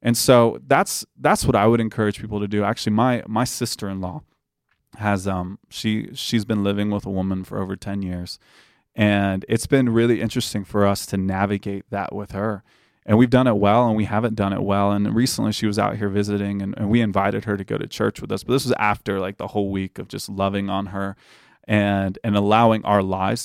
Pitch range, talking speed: 100-115 Hz, 225 wpm